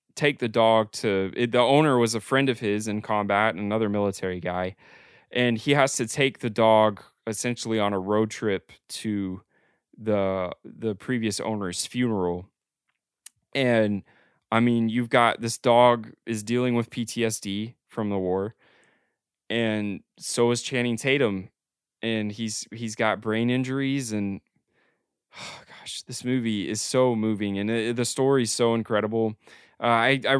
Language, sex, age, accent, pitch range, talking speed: English, male, 20-39, American, 105-125 Hz, 155 wpm